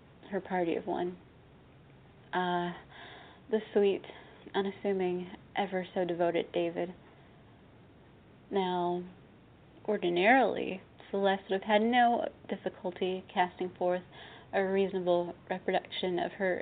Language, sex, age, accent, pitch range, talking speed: English, female, 20-39, American, 180-195 Hz, 90 wpm